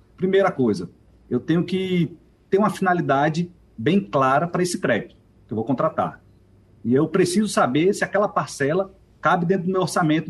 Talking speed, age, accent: 170 wpm, 40-59, Brazilian